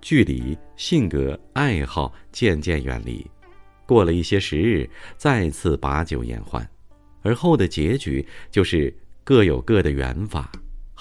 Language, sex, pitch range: Chinese, male, 80-115 Hz